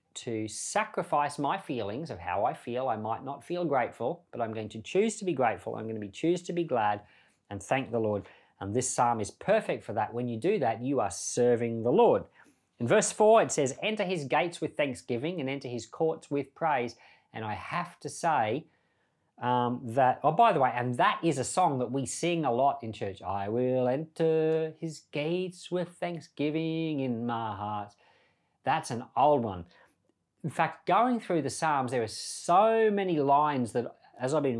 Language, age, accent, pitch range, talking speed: English, 40-59, Australian, 110-160 Hz, 200 wpm